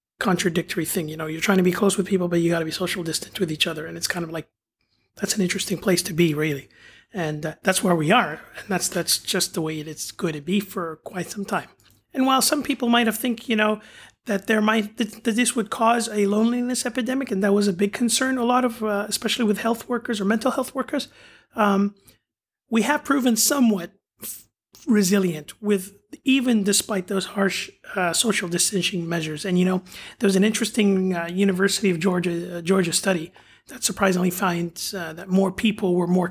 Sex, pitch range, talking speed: male, 180-220 Hz, 215 wpm